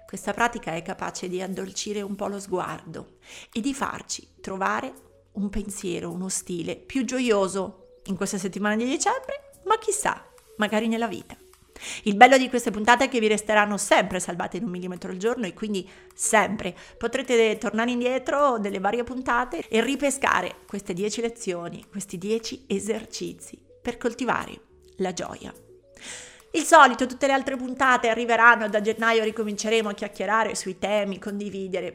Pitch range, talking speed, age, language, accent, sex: 200-240 Hz, 155 wpm, 30-49, Italian, native, female